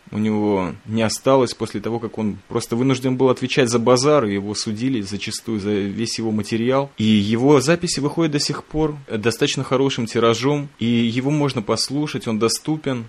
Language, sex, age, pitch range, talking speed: Russian, male, 20-39, 105-130 Hz, 170 wpm